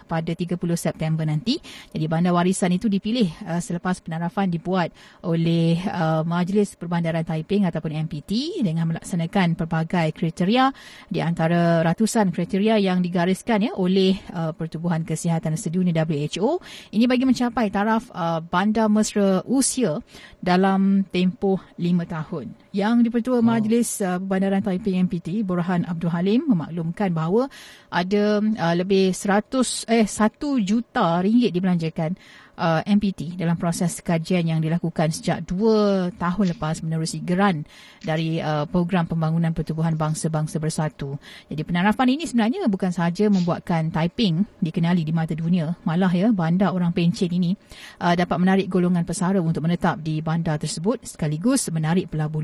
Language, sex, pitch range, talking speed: Malay, female, 170-210 Hz, 130 wpm